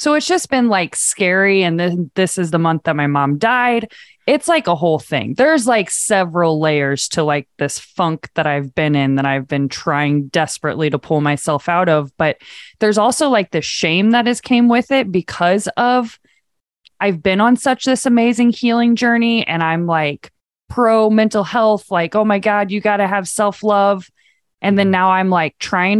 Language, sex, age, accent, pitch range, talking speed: English, female, 20-39, American, 155-210 Hz, 195 wpm